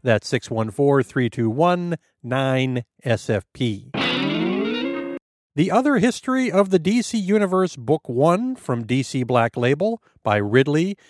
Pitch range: 130-185 Hz